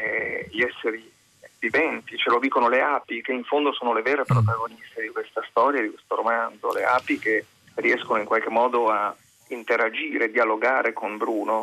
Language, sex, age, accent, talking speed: Italian, male, 40-59, native, 170 wpm